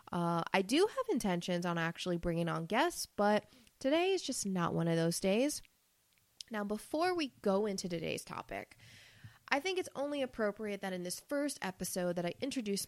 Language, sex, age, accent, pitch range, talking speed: English, female, 20-39, American, 175-245 Hz, 180 wpm